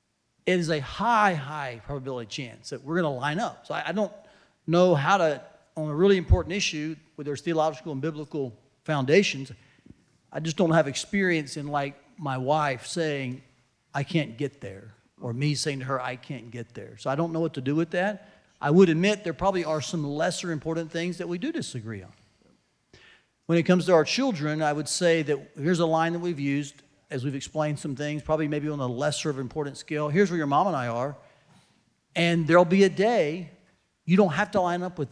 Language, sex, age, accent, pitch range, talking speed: English, male, 40-59, American, 135-175 Hz, 215 wpm